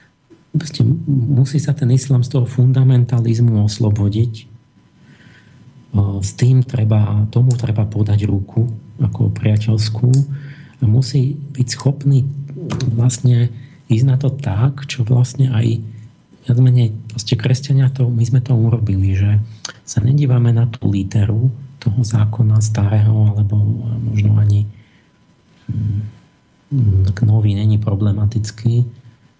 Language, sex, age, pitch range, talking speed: Slovak, male, 40-59, 110-130 Hz, 105 wpm